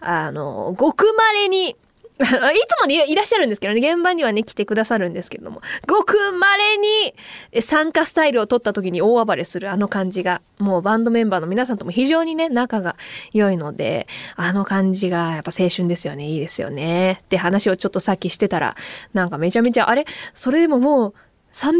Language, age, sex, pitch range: Japanese, 20-39, female, 210-335 Hz